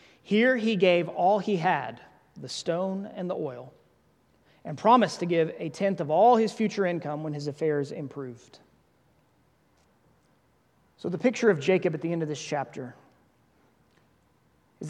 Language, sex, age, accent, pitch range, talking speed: English, male, 30-49, American, 145-195 Hz, 155 wpm